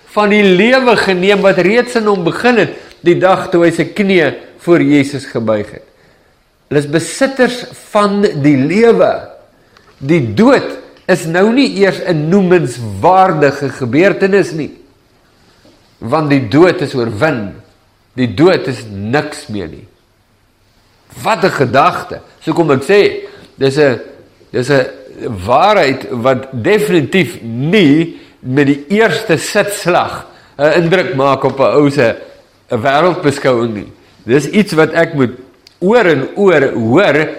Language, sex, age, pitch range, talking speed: English, male, 50-69, 135-195 Hz, 130 wpm